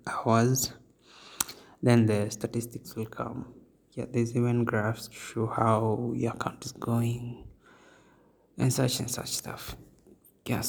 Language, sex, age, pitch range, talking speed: English, male, 20-39, 110-125 Hz, 130 wpm